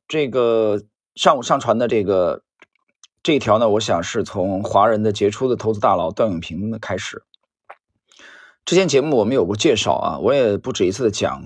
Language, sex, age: Chinese, male, 20-39